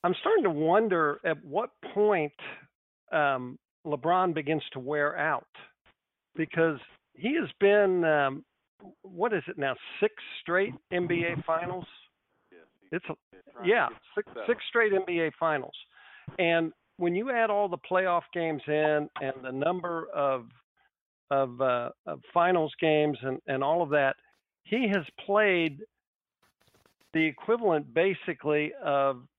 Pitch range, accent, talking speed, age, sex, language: 140-175 Hz, American, 130 wpm, 50-69, male, English